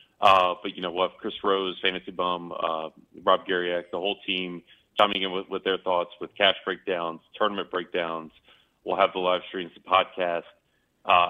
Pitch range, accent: 85-100 Hz, American